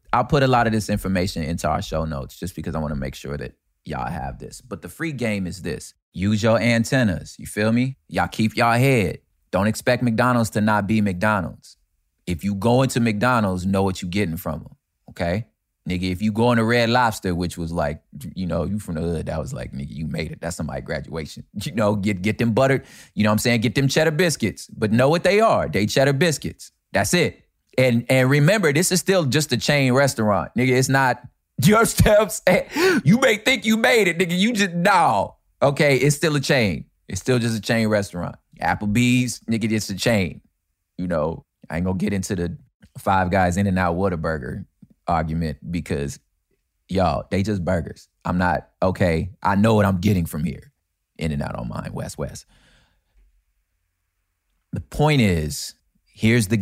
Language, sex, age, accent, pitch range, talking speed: English, male, 20-39, American, 85-125 Hz, 205 wpm